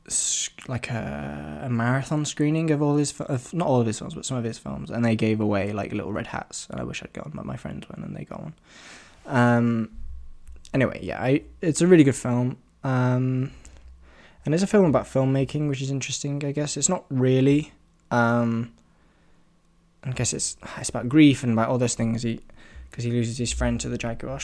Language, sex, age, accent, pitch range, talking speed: English, male, 20-39, British, 105-135 Hz, 210 wpm